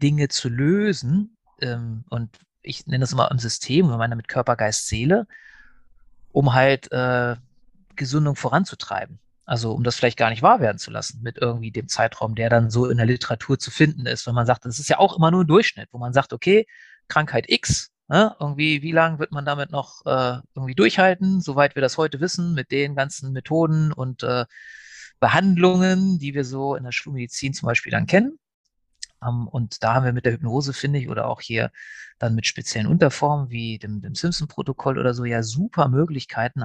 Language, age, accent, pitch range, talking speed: German, 40-59, German, 120-150 Hz, 195 wpm